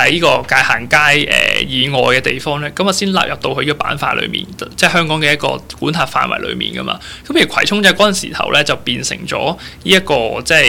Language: Chinese